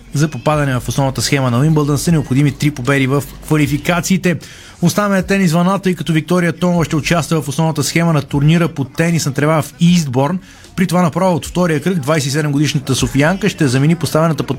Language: Bulgarian